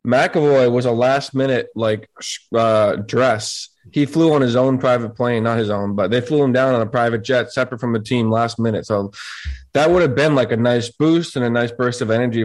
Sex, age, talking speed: male, 20-39, 230 wpm